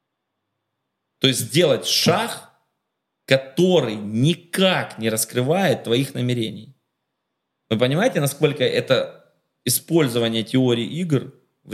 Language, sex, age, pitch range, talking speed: English, male, 30-49, 115-155 Hz, 90 wpm